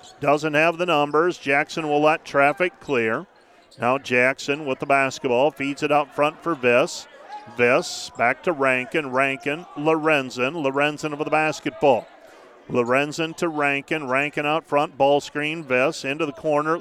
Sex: male